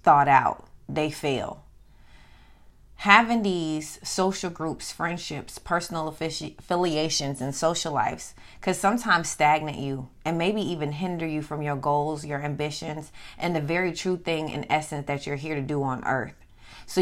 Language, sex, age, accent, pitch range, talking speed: English, female, 30-49, American, 145-180 Hz, 150 wpm